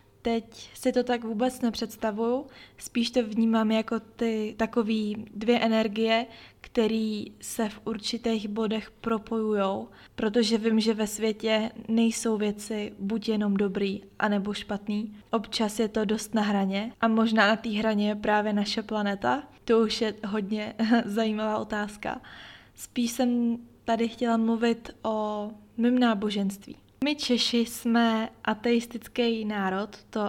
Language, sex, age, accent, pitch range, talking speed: Czech, female, 20-39, native, 215-235 Hz, 135 wpm